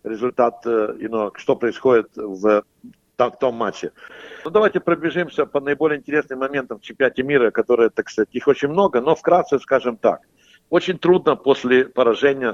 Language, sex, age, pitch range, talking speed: Russian, male, 60-79, 120-150 Hz, 140 wpm